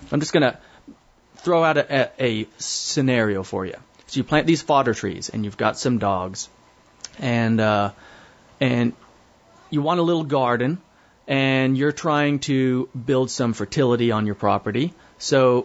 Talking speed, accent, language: 155 wpm, American, English